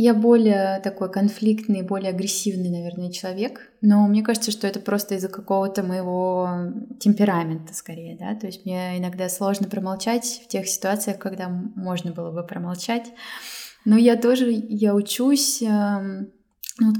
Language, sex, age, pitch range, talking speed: Russian, female, 20-39, 195-250 Hz, 140 wpm